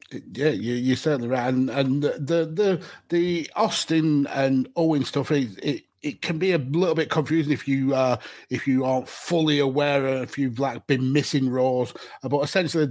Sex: male